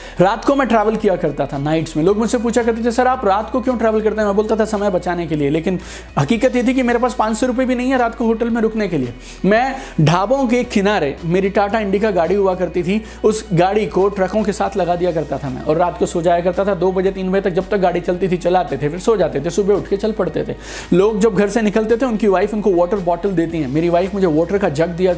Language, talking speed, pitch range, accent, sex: Hindi, 215 wpm, 175-225 Hz, native, male